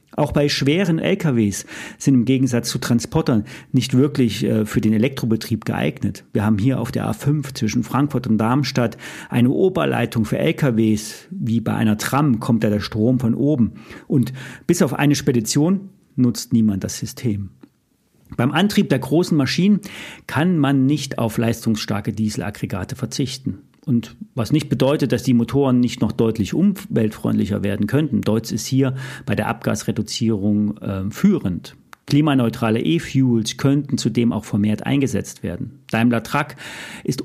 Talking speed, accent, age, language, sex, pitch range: 150 wpm, German, 40-59, German, male, 110-140 Hz